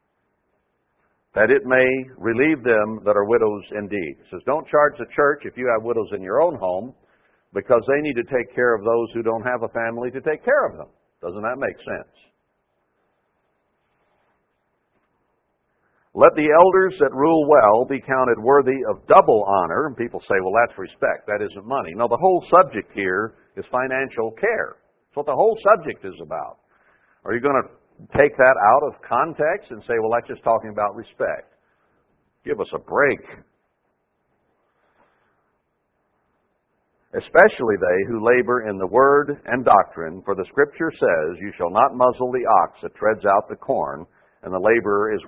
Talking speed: 170 wpm